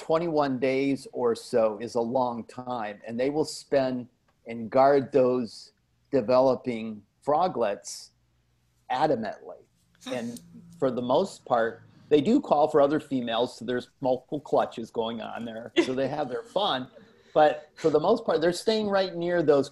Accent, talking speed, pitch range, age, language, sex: American, 155 wpm, 120-155 Hz, 40-59, English, male